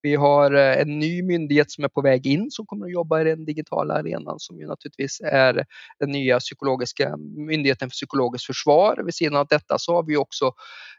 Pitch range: 135-170 Hz